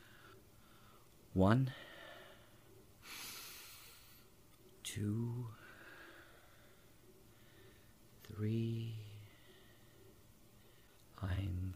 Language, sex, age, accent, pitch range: English, male, 50-69, American, 105-125 Hz